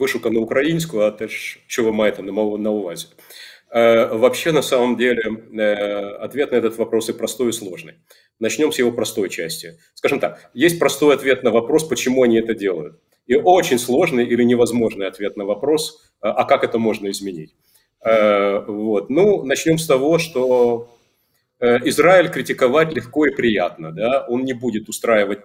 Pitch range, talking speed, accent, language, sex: 110-125 Hz, 165 wpm, native, Ukrainian, male